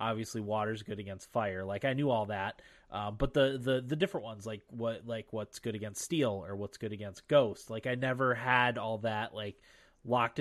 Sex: male